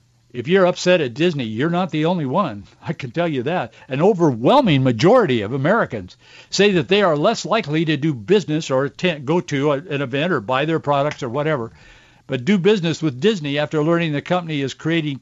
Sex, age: male, 60-79